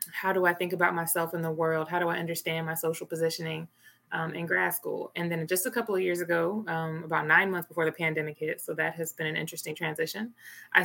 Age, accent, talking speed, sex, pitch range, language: 20-39, American, 245 wpm, female, 160-185 Hz, English